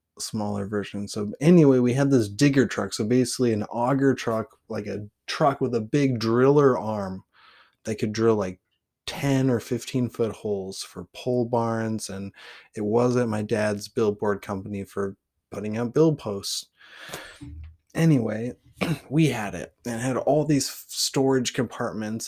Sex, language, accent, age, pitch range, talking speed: male, English, American, 20-39, 105-130 Hz, 150 wpm